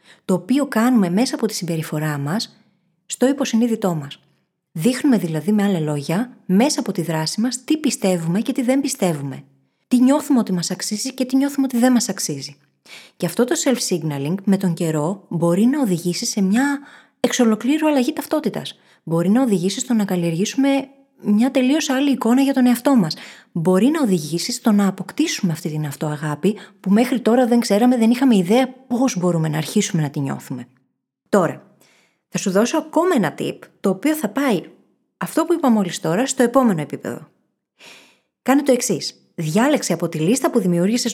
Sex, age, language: female, 20-39, Greek